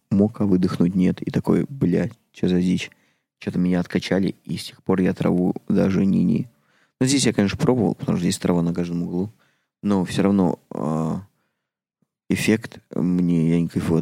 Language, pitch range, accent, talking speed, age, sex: Russian, 85-100 Hz, native, 175 wpm, 20-39, male